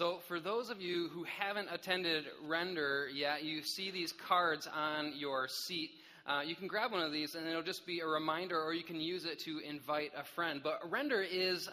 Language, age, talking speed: English, 20-39, 215 wpm